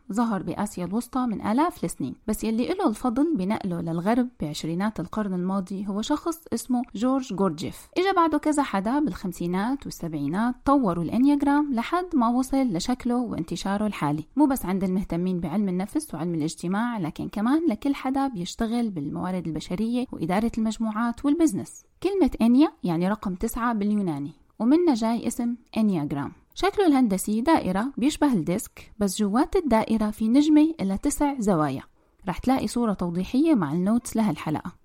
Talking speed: 140 wpm